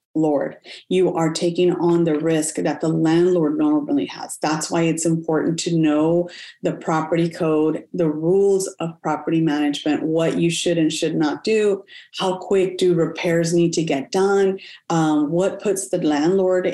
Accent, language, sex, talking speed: American, English, female, 165 wpm